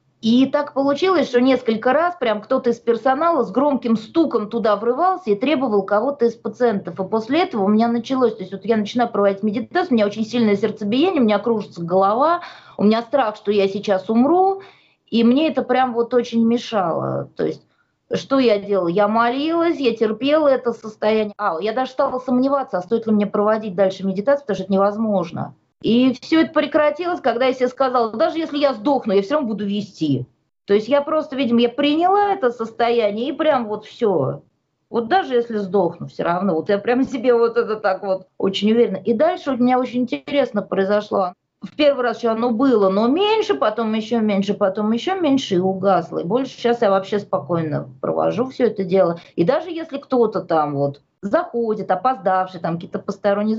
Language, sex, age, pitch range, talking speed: Russian, female, 20-39, 200-265 Hz, 195 wpm